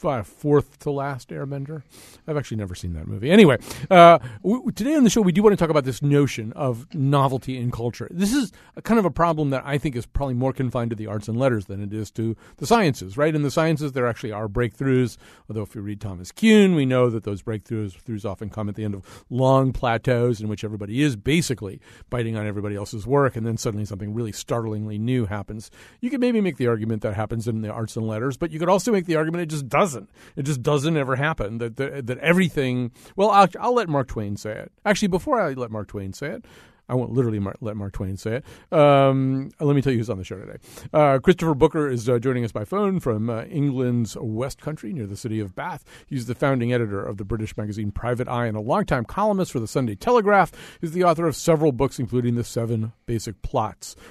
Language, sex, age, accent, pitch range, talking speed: English, male, 50-69, American, 110-155 Hz, 235 wpm